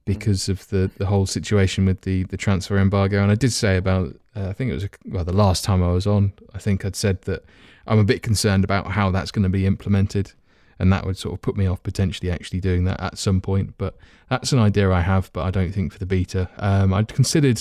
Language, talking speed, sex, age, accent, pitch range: English, 260 wpm, male, 20-39, British, 95-110 Hz